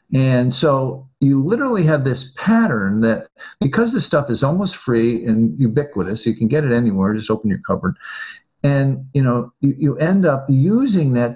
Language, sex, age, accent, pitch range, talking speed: English, male, 50-69, American, 115-170 Hz, 175 wpm